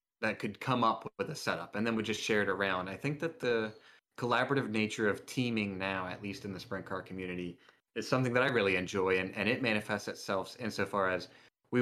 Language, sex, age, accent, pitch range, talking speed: English, male, 30-49, American, 100-115 Hz, 225 wpm